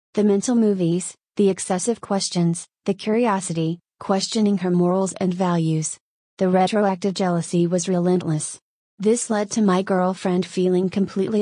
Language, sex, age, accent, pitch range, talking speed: English, female, 30-49, American, 180-205 Hz, 130 wpm